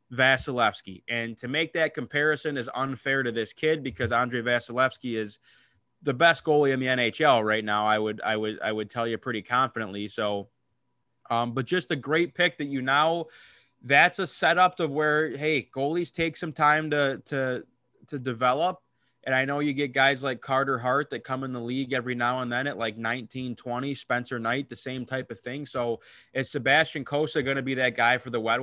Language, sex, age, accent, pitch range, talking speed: English, male, 20-39, American, 120-145 Hz, 205 wpm